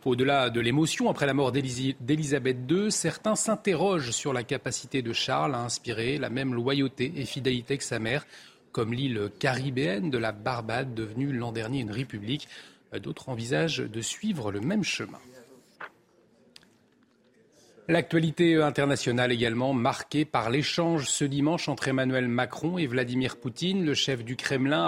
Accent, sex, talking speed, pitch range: French, male, 145 wpm, 125-165 Hz